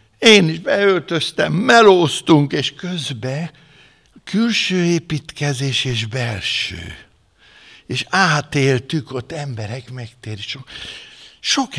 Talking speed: 85 wpm